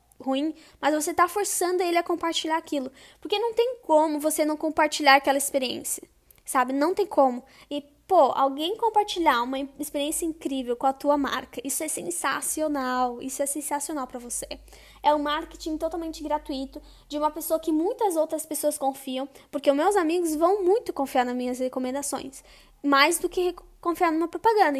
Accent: Brazilian